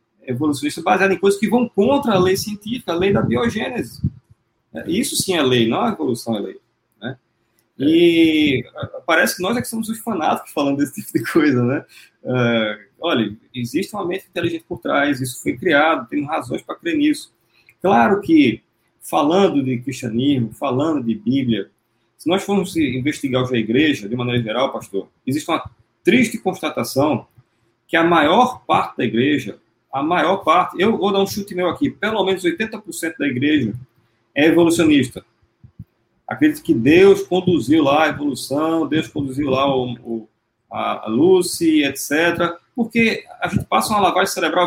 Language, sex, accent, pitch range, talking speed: Portuguese, male, Brazilian, 130-195 Hz, 165 wpm